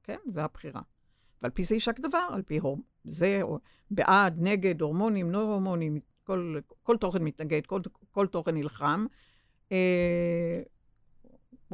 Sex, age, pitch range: female, 50-69, 155-185 Hz